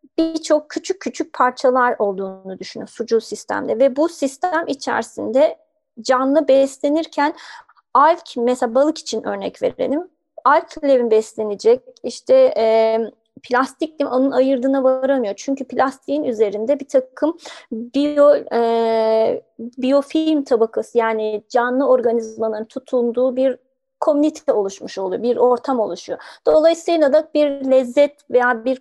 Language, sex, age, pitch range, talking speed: Turkish, female, 30-49, 230-295 Hz, 115 wpm